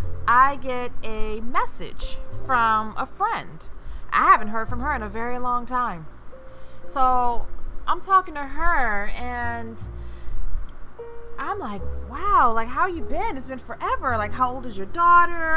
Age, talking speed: 20-39, 150 wpm